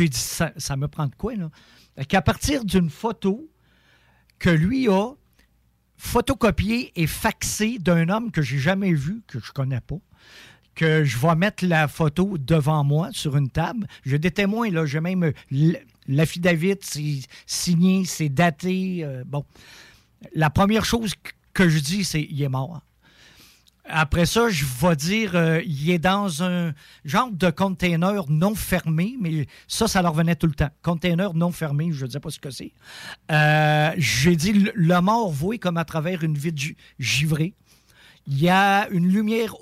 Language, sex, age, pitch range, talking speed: French, male, 50-69, 155-195 Hz, 175 wpm